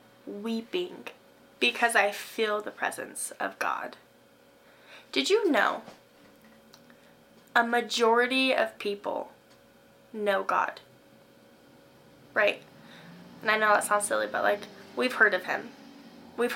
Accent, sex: American, female